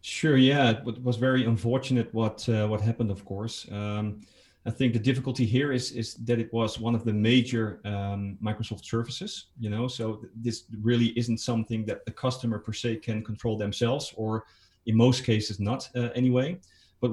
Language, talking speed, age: English, 190 wpm, 30-49